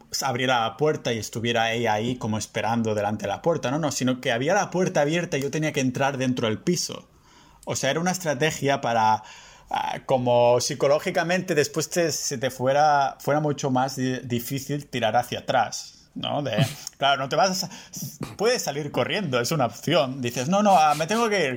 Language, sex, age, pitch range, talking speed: Spanish, male, 30-49, 125-155 Hz, 185 wpm